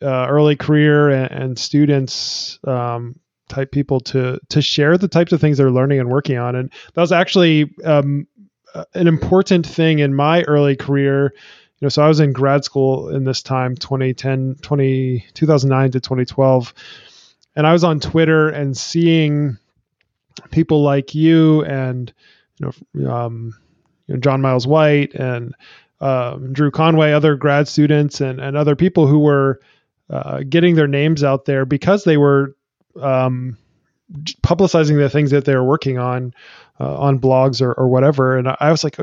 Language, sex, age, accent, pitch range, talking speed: English, male, 20-39, American, 130-155 Hz, 165 wpm